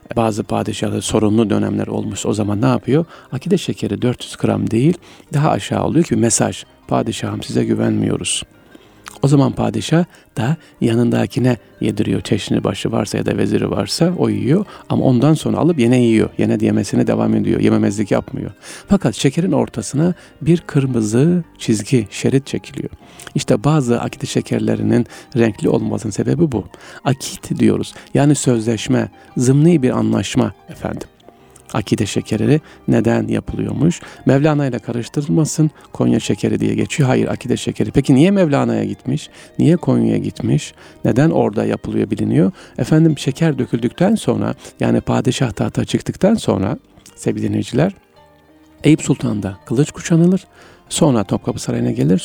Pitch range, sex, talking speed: 110-150 Hz, male, 130 wpm